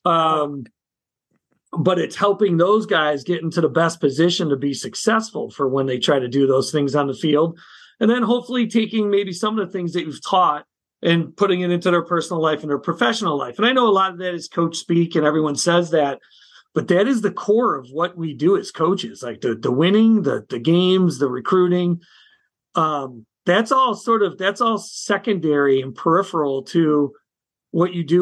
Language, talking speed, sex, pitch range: English, 205 wpm, male, 150-185 Hz